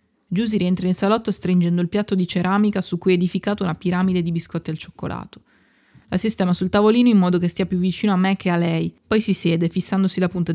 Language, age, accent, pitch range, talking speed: Italian, 20-39, native, 170-205 Hz, 230 wpm